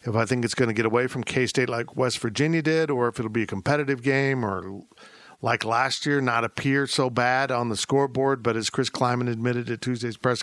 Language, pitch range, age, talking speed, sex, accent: English, 115-145 Hz, 50-69, 230 wpm, male, American